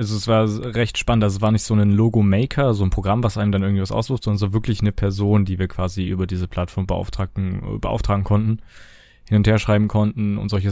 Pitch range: 95-115 Hz